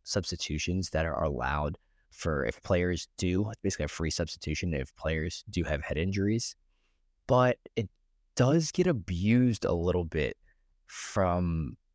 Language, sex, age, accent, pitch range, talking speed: English, male, 20-39, American, 85-110 Hz, 135 wpm